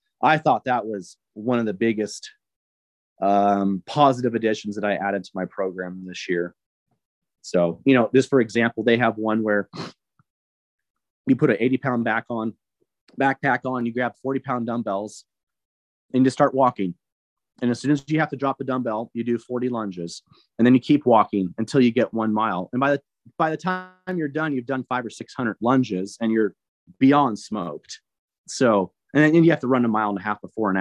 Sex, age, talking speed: male, 30-49, 200 wpm